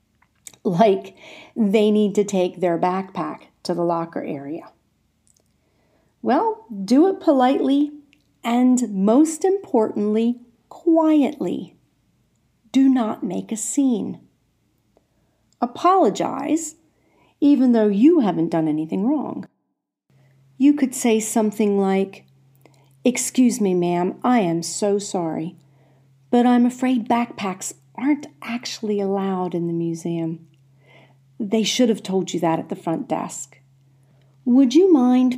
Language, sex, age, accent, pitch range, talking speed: English, female, 50-69, American, 165-250 Hz, 115 wpm